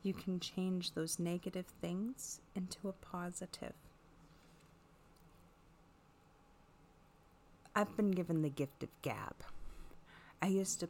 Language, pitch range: English, 160-195 Hz